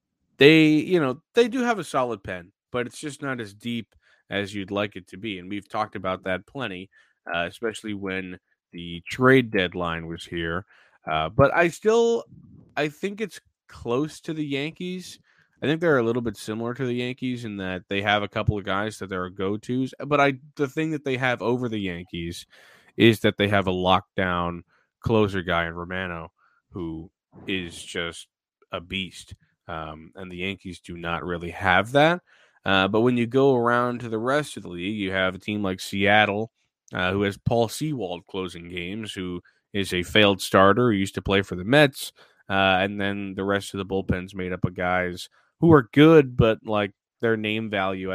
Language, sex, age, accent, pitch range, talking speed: English, male, 20-39, American, 95-120 Hz, 200 wpm